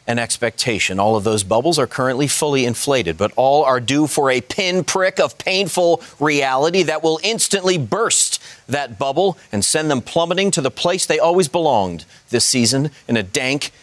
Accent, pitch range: American, 120-150 Hz